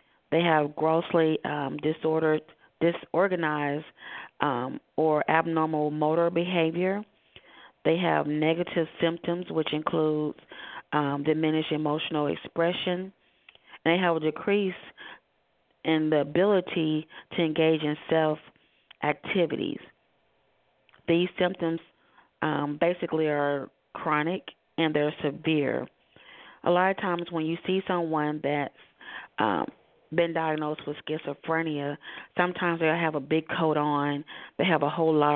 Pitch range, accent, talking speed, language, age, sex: 150-170 Hz, American, 115 wpm, English, 30-49, female